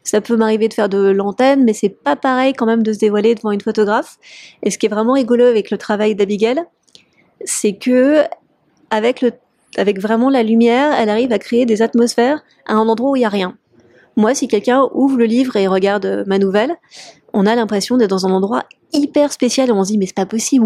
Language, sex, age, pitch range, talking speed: French, female, 30-49, 215-265 Hz, 220 wpm